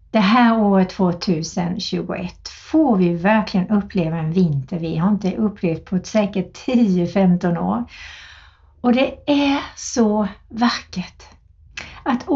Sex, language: female, Swedish